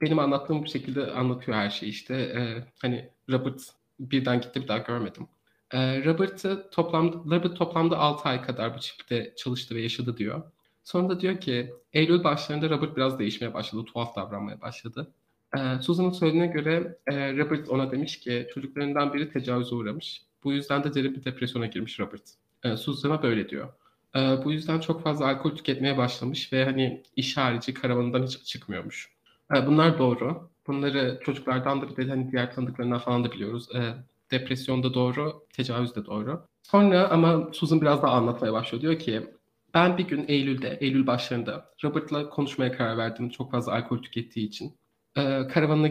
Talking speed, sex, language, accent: 160 wpm, male, Turkish, native